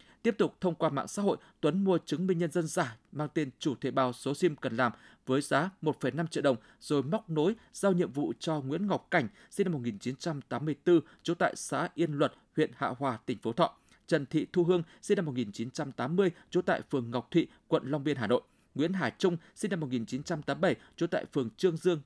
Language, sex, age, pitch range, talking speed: Vietnamese, male, 20-39, 135-175 Hz, 225 wpm